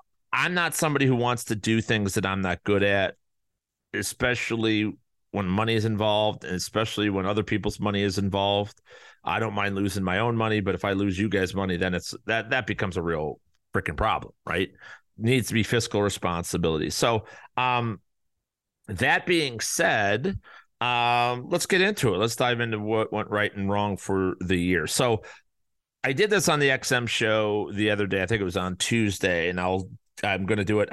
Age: 40-59